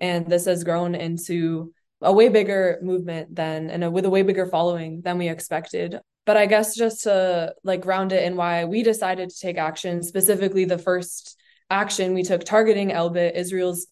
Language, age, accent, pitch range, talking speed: English, 20-39, American, 165-190 Hz, 185 wpm